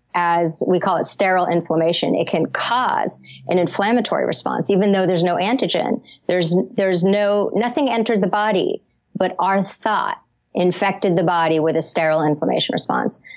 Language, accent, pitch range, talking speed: English, American, 170-205 Hz, 155 wpm